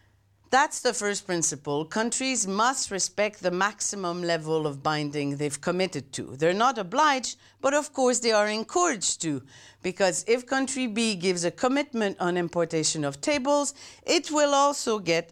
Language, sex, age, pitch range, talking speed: English, female, 50-69, 150-235 Hz, 155 wpm